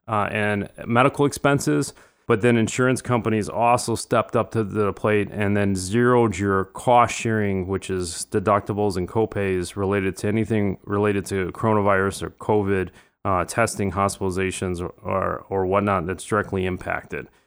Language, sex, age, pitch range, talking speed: English, male, 30-49, 100-120 Hz, 150 wpm